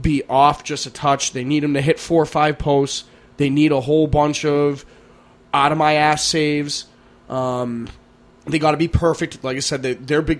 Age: 20-39